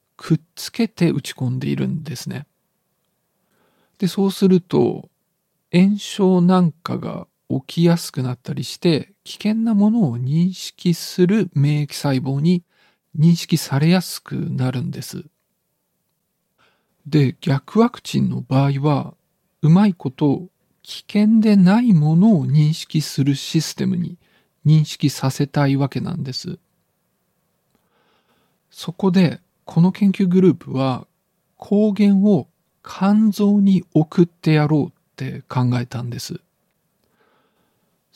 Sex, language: male, Japanese